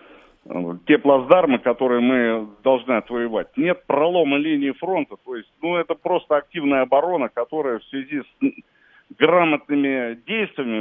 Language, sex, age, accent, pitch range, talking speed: Russian, male, 40-59, native, 125-180 Hz, 130 wpm